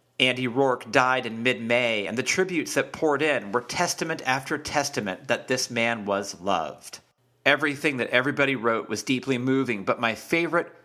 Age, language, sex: 40-59, English, male